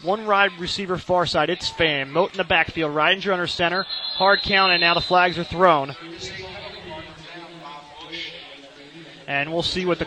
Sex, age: male, 30-49